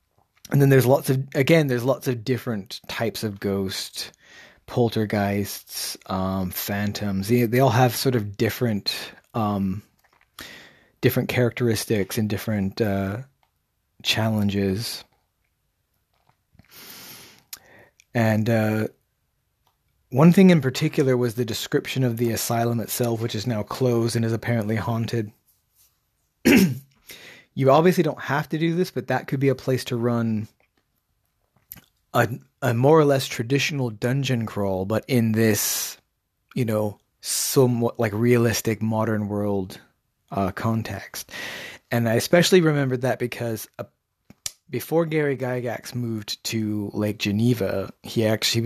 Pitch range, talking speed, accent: 105-130 Hz, 125 wpm, American